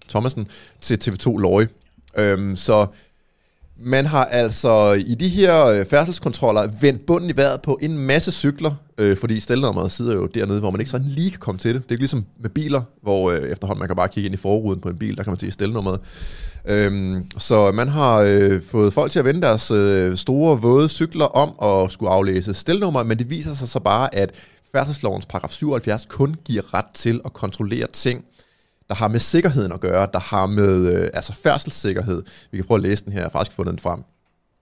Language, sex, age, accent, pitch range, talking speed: Danish, male, 30-49, native, 100-140 Hz, 210 wpm